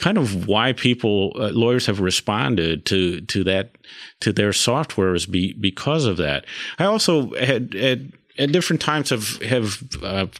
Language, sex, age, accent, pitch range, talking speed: English, male, 40-59, American, 105-130 Hz, 165 wpm